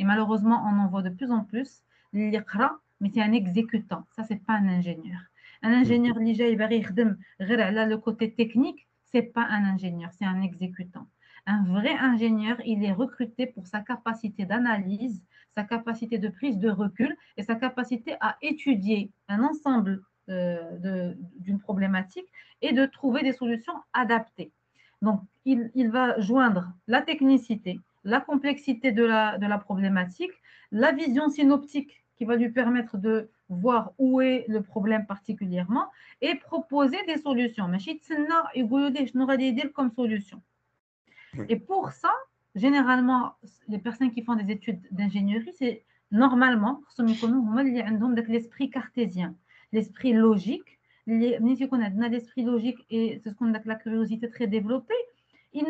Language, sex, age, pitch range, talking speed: Arabic, female, 40-59, 210-260 Hz, 145 wpm